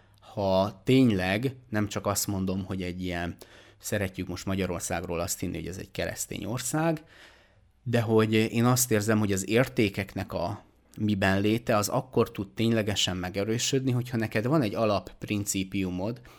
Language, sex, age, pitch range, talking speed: Hungarian, male, 30-49, 90-110 Hz, 145 wpm